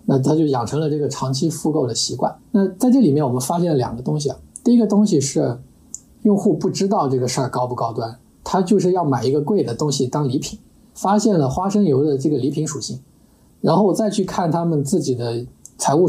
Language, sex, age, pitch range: Chinese, male, 20-39, 130-185 Hz